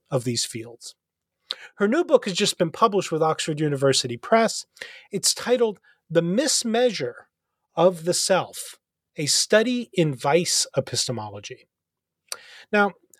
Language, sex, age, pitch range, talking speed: English, male, 30-49, 155-240 Hz, 125 wpm